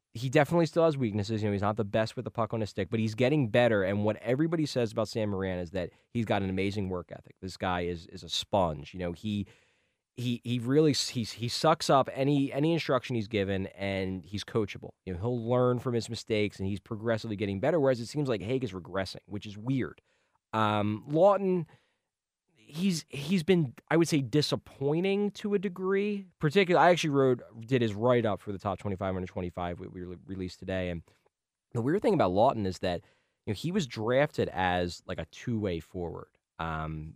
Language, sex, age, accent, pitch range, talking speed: English, male, 20-39, American, 90-130 Hz, 215 wpm